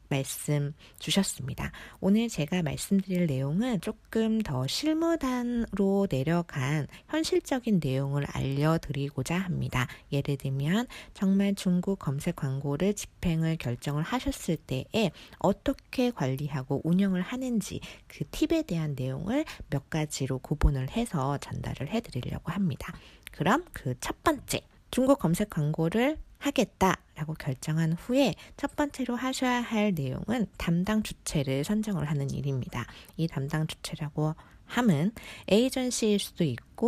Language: Korean